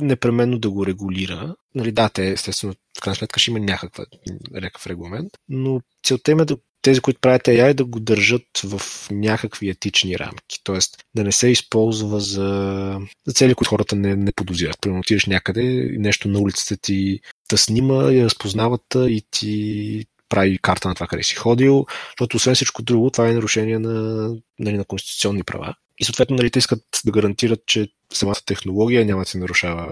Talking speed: 185 wpm